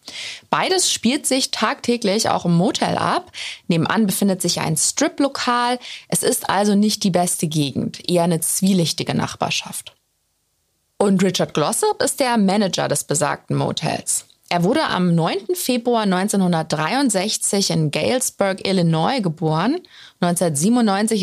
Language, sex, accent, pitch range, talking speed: German, female, German, 175-245 Hz, 125 wpm